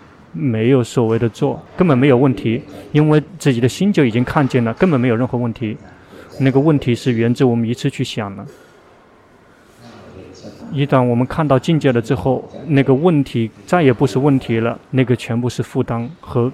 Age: 20-39